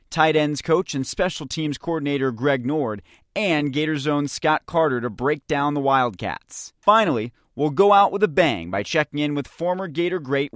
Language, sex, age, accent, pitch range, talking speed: English, male, 30-49, American, 135-175 Hz, 190 wpm